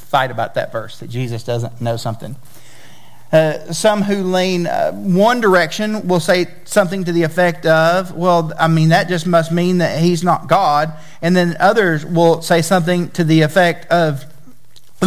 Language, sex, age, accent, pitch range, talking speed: English, male, 40-59, American, 160-200 Hz, 180 wpm